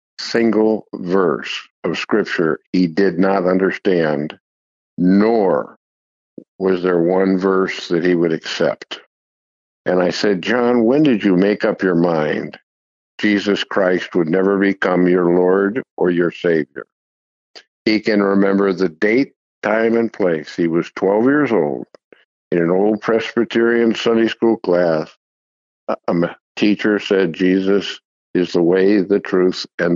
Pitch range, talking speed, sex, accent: 85-100 Hz, 135 wpm, male, American